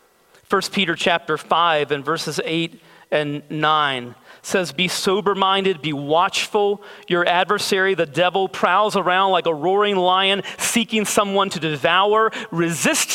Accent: American